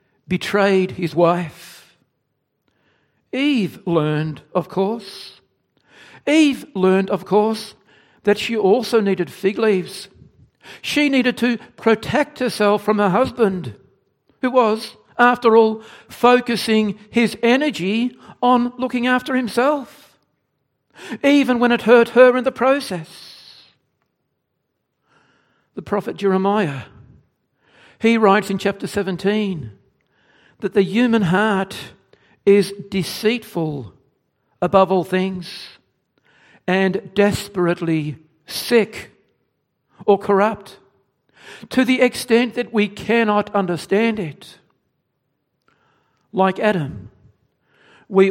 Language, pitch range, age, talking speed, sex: English, 180-230 Hz, 60-79, 95 wpm, male